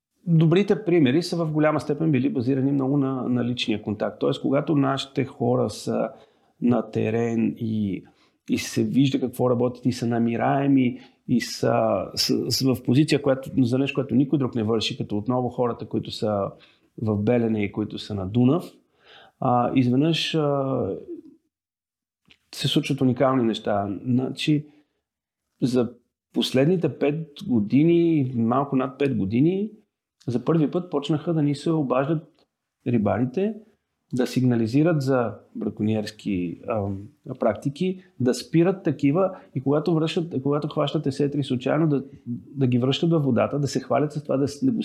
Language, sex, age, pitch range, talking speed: Bulgarian, male, 40-59, 120-155 Hz, 145 wpm